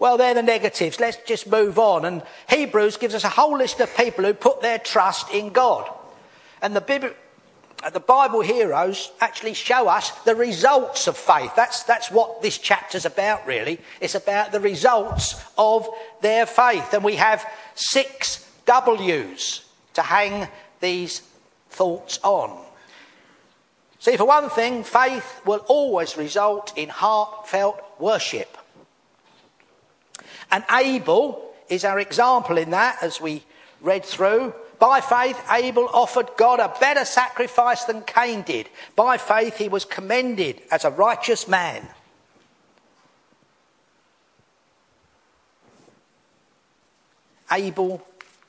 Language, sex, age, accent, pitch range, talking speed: English, male, 50-69, British, 185-245 Hz, 125 wpm